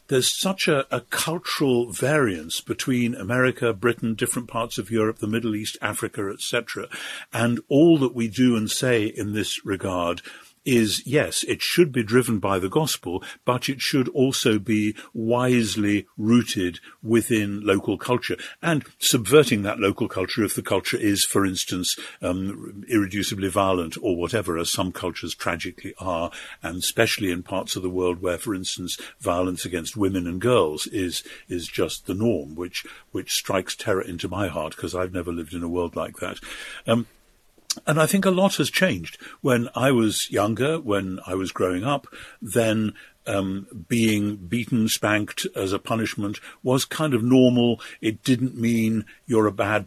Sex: male